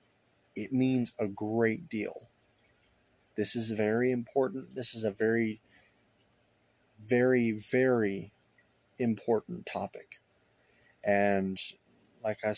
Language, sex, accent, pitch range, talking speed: English, male, American, 110-125 Hz, 95 wpm